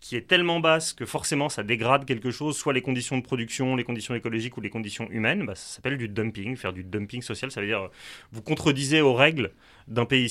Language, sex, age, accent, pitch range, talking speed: French, male, 30-49, French, 110-140 Hz, 235 wpm